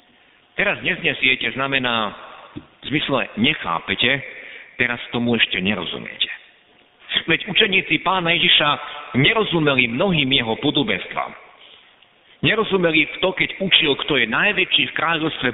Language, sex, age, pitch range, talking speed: Slovak, male, 50-69, 140-190 Hz, 110 wpm